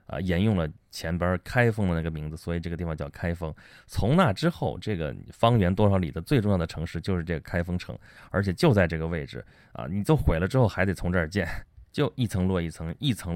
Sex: male